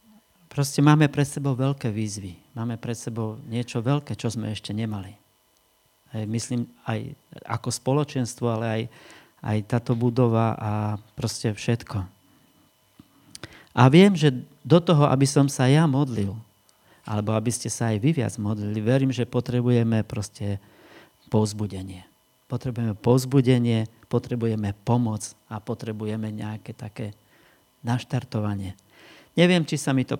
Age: 40-59